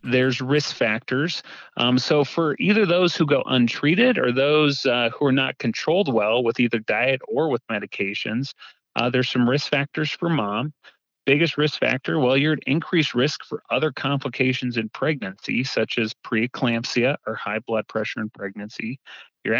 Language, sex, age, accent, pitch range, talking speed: English, male, 30-49, American, 115-145 Hz, 170 wpm